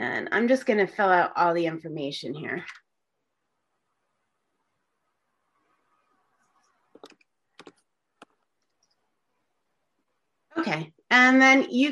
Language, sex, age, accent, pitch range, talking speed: English, female, 30-49, American, 185-245 Hz, 70 wpm